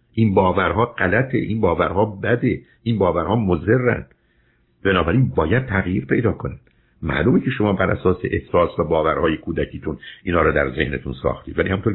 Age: 60-79